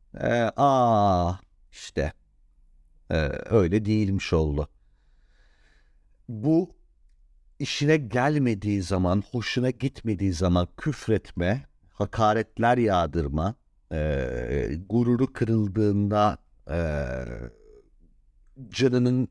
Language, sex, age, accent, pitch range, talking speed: Turkish, male, 50-69, native, 90-120 Hz, 70 wpm